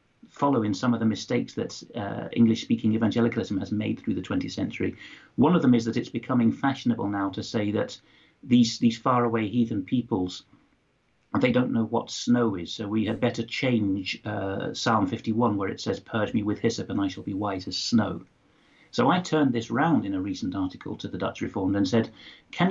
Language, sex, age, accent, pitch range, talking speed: English, male, 50-69, British, 105-125 Hz, 200 wpm